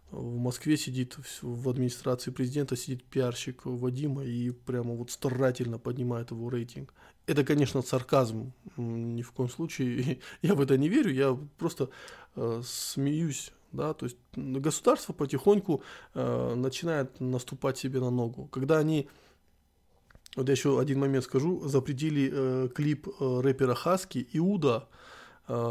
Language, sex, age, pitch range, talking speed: Russian, male, 20-39, 125-140 Hz, 140 wpm